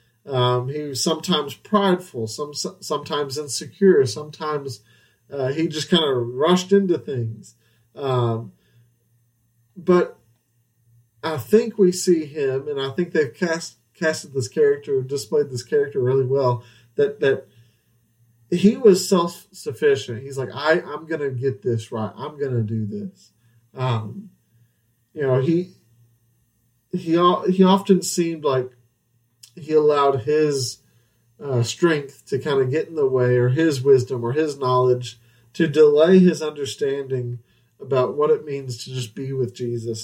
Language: English